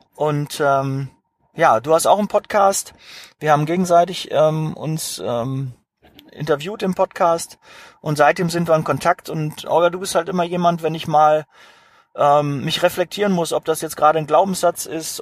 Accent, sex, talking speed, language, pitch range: German, male, 180 wpm, German, 145-175 Hz